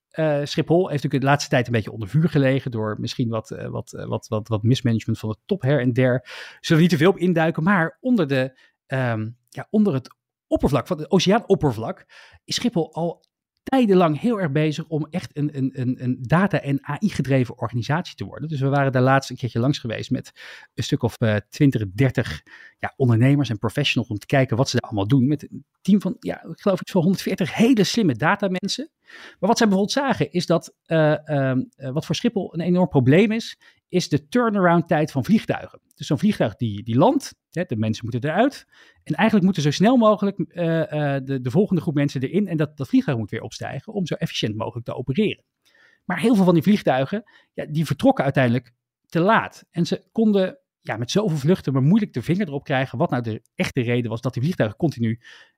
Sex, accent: male, Dutch